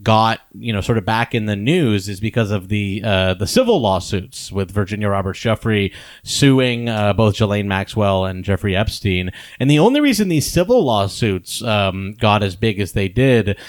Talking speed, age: 190 wpm, 30-49